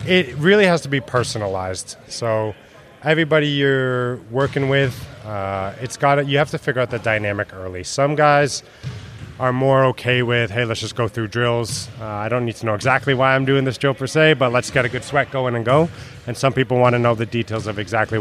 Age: 30-49